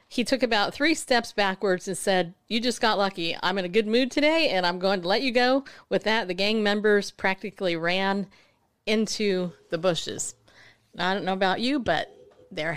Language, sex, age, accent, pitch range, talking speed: English, female, 40-59, American, 180-245 Hz, 200 wpm